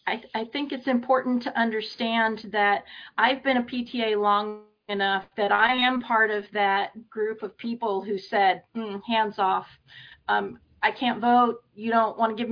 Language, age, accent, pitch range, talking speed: English, 40-59, American, 200-240 Hz, 180 wpm